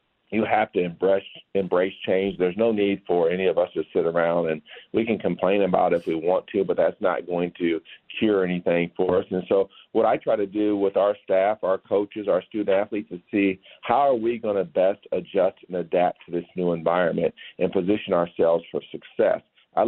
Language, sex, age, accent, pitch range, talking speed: English, male, 50-69, American, 95-110 Hz, 210 wpm